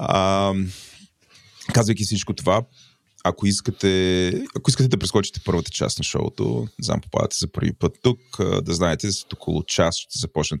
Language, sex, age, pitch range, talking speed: Bulgarian, male, 20-39, 85-105 Hz, 160 wpm